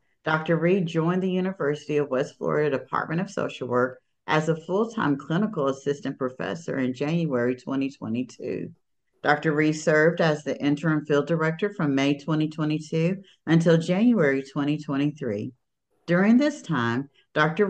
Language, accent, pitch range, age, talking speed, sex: English, American, 135-175 Hz, 50-69, 130 wpm, female